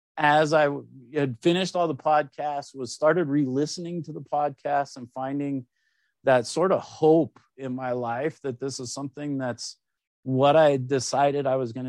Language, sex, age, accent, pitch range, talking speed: English, male, 50-69, American, 120-150 Hz, 165 wpm